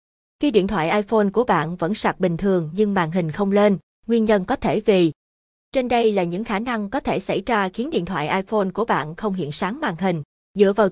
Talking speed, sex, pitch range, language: 235 wpm, female, 180-225 Hz, Vietnamese